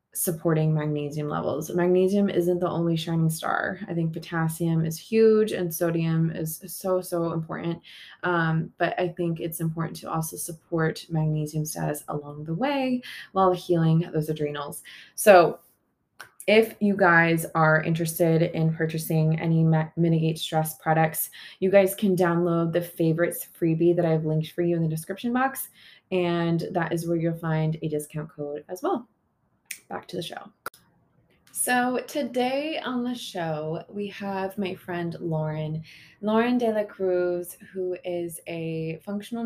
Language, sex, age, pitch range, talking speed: English, female, 20-39, 160-190 Hz, 150 wpm